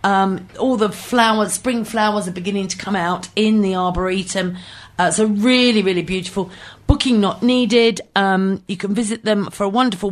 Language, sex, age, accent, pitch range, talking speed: English, female, 40-59, British, 180-225 Hz, 190 wpm